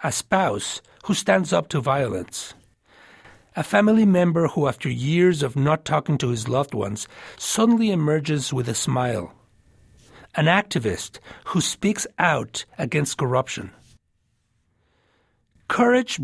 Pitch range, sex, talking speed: 115-175 Hz, male, 120 wpm